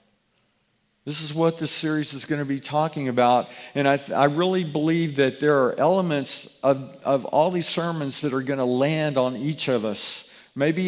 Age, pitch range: 50-69, 135-160 Hz